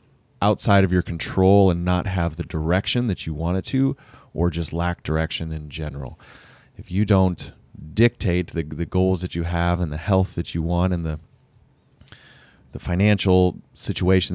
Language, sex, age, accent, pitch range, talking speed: English, male, 30-49, American, 80-100 Hz, 170 wpm